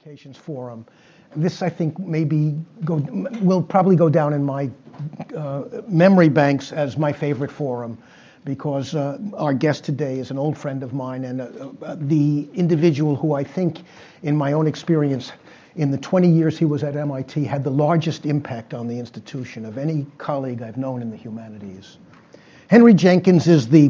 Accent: American